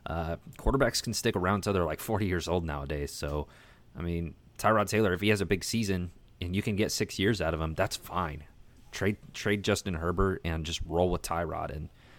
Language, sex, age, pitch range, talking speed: English, male, 30-49, 85-110 Hz, 215 wpm